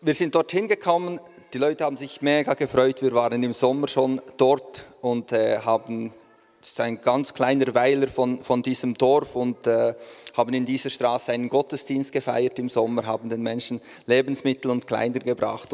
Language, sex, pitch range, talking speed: German, male, 125-160 Hz, 180 wpm